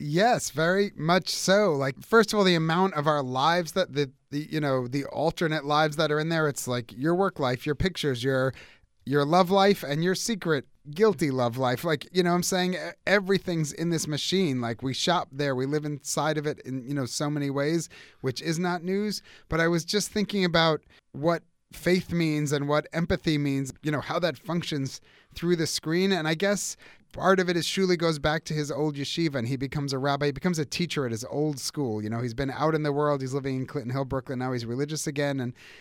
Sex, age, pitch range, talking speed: male, 30-49, 140-175 Hz, 230 wpm